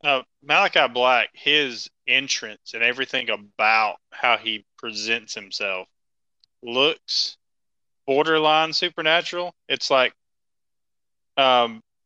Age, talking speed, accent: 20-39, 90 wpm, American